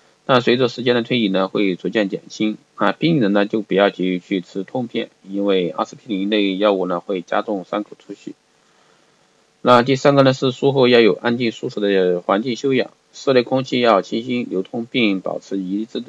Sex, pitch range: male, 100-125 Hz